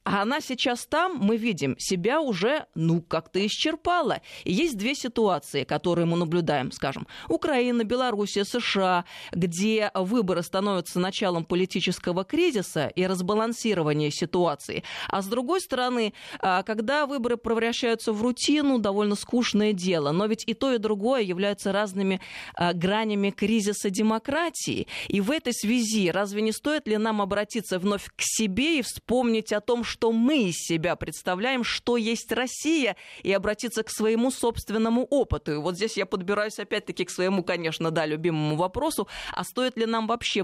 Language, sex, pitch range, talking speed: Russian, female, 185-235 Hz, 150 wpm